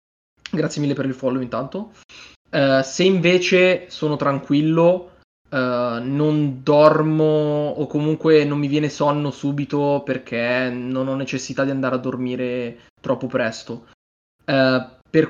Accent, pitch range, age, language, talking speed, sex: native, 135-165 Hz, 20-39, Italian, 120 wpm, male